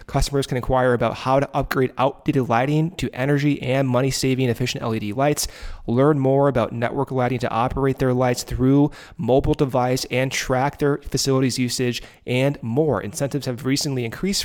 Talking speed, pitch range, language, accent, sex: 160 wpm, 120-145 Hz, English, American, male